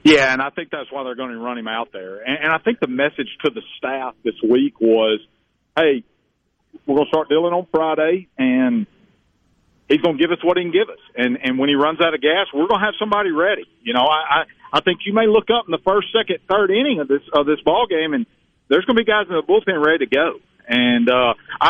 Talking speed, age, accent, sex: 260 wpm, 50-69, American, male